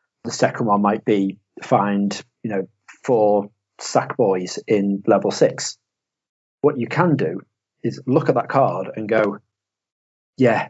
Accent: British